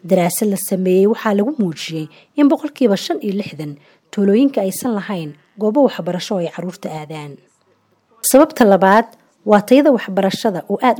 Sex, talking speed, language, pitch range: female, 130 wpm, English, 175-240 Hz